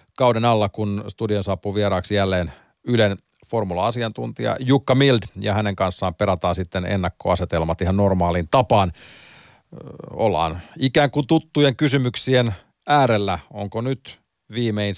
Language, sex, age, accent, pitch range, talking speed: Finnish, male, 40-59, native, 90-115 Hz, 120 wpm